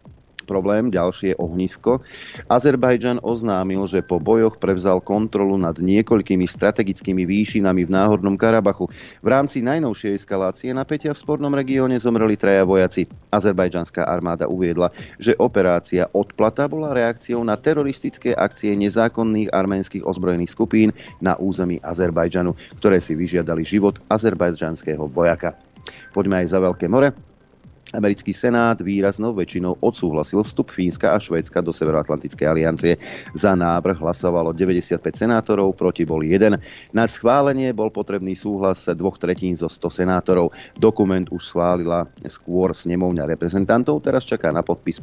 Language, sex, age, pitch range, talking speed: Slovak, male, 30-49, 90-110 Hz, 130 wpm